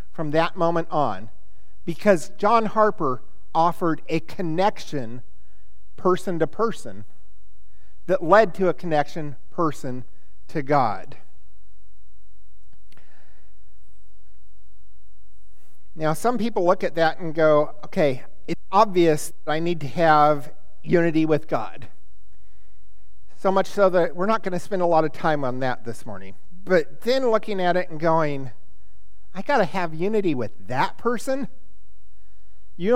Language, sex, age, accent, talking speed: English, male, 50-69, American, 135 wpm